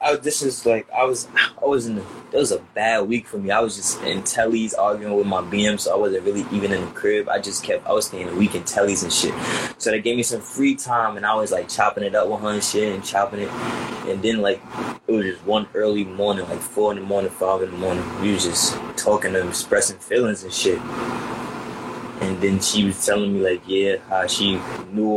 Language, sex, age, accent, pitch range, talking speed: English, male, 20-39, American, 95-115 Hz, 250 wpm